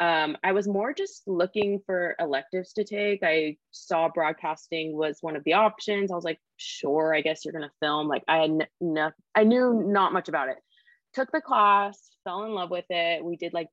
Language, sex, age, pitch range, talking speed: English, female, 20-39, 160-200 Hz, 215 wpm